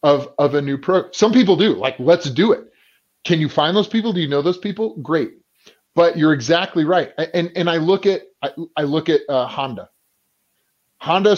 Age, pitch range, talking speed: 30-49, 145-195 Hz, 205 wpm